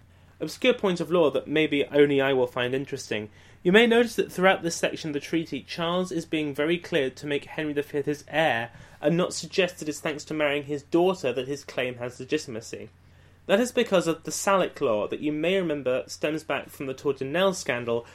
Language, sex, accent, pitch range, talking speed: English, male, British, 125-170 Hz, 210 wpm